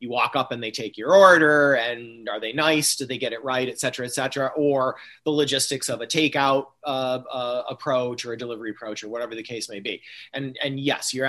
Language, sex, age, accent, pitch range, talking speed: English, male, 30-49, American, 120-145 Hz, 235 wpm